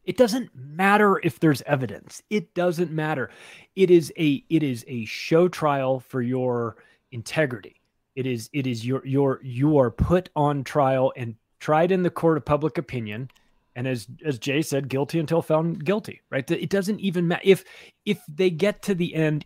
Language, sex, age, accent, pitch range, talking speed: English, male, 30-49, American, 125-175 Hz, 185 wpm